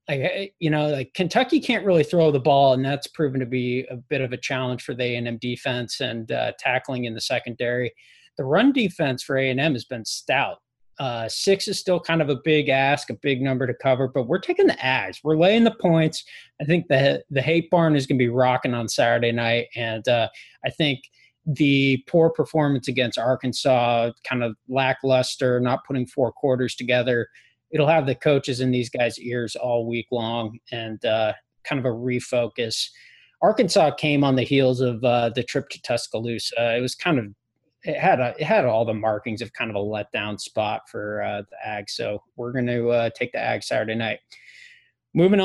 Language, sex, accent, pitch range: English, male, American, 120-150 Hz